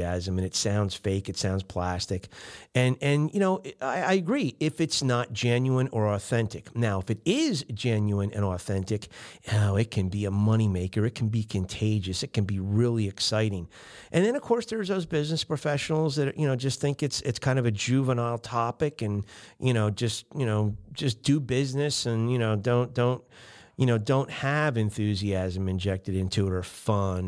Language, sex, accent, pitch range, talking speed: English, male, American, 100-140 Hz, 190 wpm